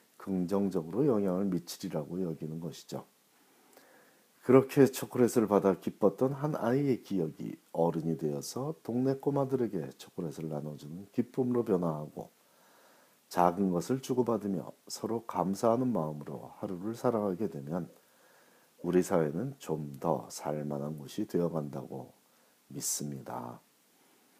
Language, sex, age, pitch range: Korean, male, 40-59, 80-110 Hz